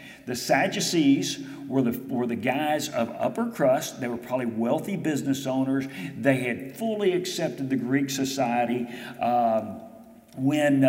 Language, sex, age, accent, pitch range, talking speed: English, male, 50-69, American, 130-180 Hz, 145 wpm